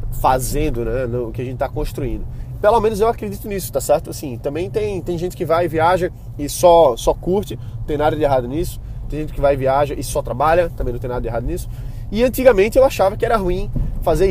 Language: Portuguese